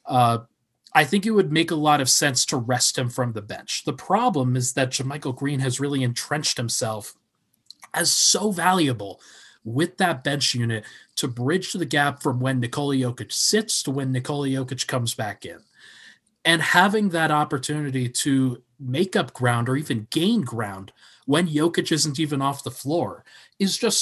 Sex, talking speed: male, 175 wpm